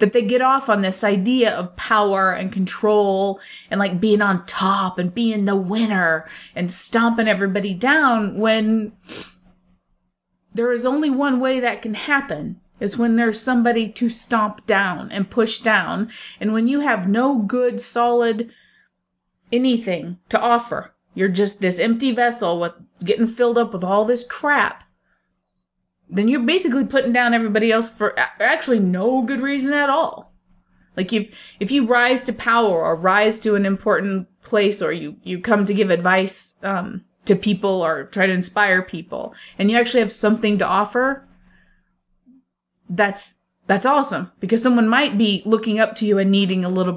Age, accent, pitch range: 30-49, American, 195-235 Hz